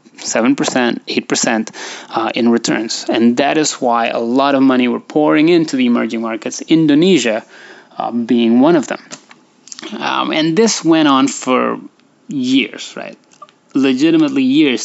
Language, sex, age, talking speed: Indonesian, male, 20-39, 135 wpm